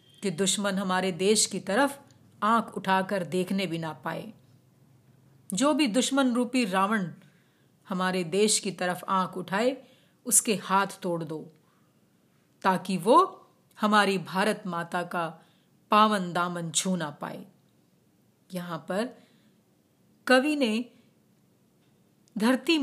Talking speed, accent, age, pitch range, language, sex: 115 wpm, native, 30-49, 175-215 Hz, Hindi, female